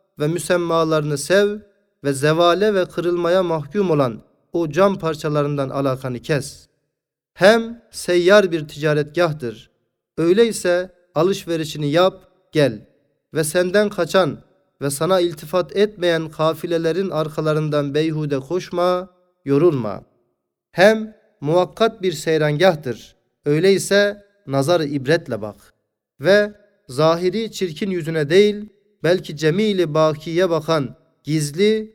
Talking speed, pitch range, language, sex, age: 100 wpm, 150-190 Hz, Turkish, male, 40-59